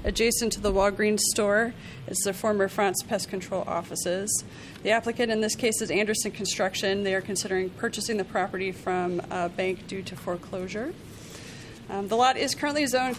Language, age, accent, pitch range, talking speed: English, 30-49, American, 190-220 Hz, 175 wpm